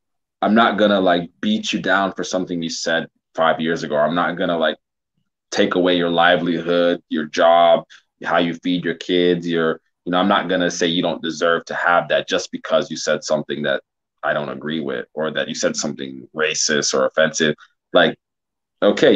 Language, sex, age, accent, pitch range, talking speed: English, male, 20-39, American, 85-110 Hz, 205 wpm